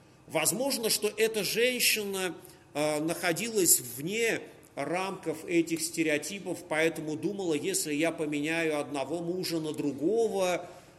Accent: native